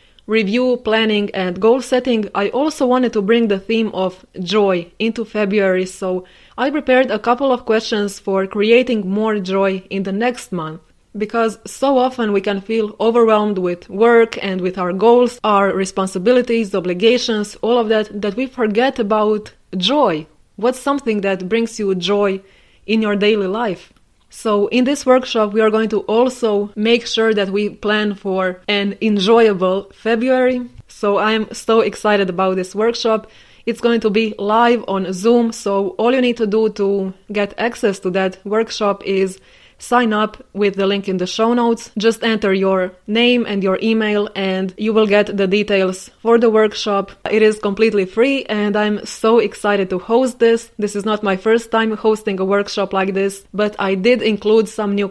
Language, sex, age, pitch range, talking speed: English, female, 20-39, 200-230 Hz, 180 wpm